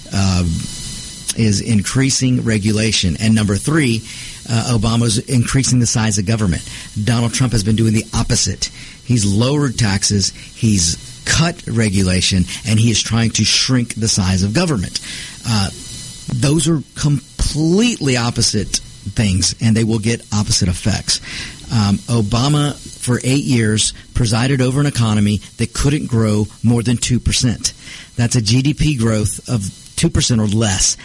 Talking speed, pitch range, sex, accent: 140 wpm, 105-125 Hz, male, American